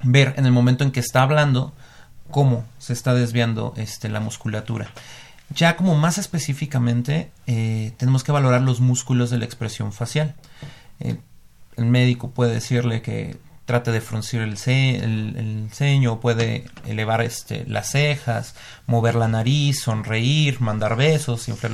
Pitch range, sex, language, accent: 115-140 Hz, male, Spanish, Mexican